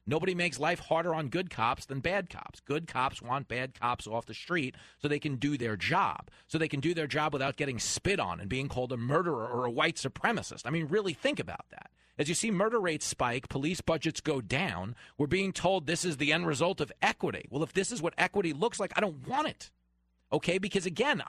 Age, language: 40-59, English